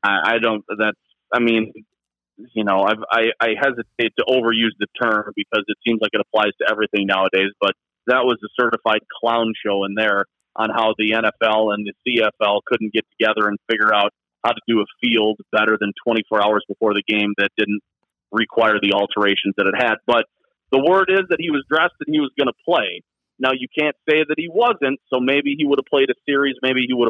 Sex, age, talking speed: male, 30-49, 215 wpm